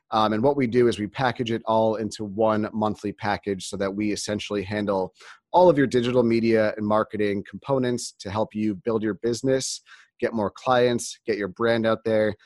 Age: 30-49